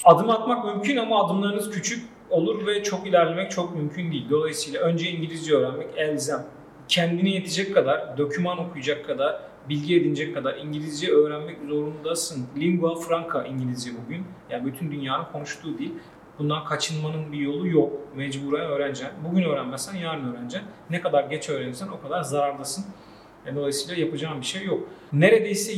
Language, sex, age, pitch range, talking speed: Turkish, male, 40-59, 150-185 Hz, 145 wpm